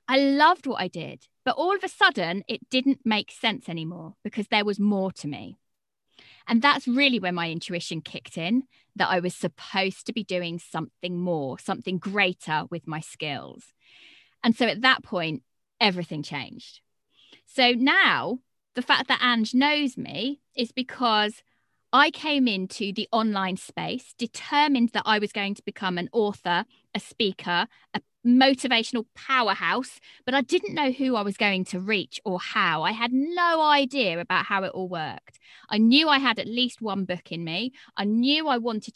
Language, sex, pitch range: English, female, 185-255 Hz